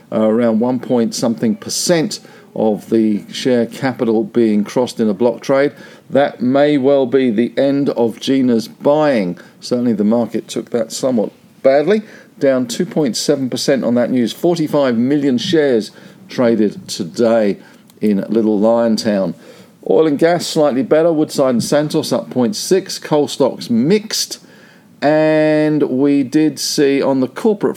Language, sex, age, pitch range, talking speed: English, male, 50-69, 120-165 Hz, 145 wpm